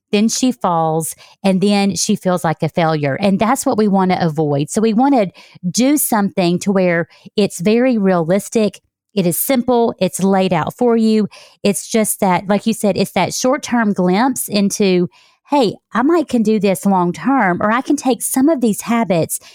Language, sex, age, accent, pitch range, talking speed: English, female, 40-59, American, 180-245 Hz, 190 wpm